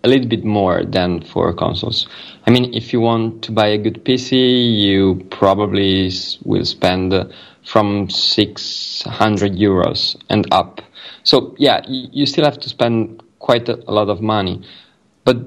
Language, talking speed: English, 165 wpm